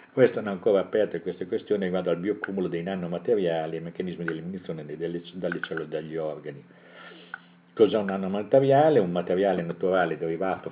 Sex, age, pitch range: male, 50-69, 85-100 Hz